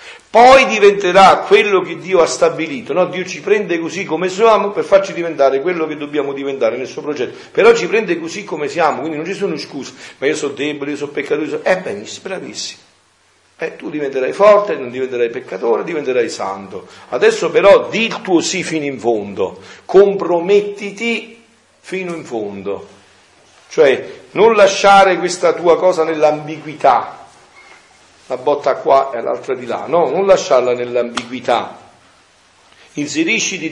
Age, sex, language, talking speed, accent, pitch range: 50-69, male, Italian, 160 wpm, native, 145-210 Hz